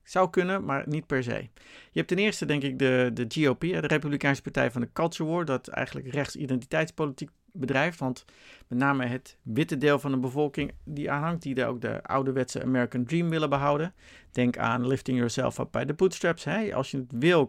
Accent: Dutch